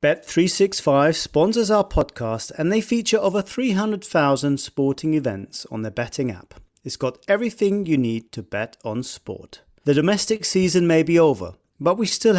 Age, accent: 40-59, British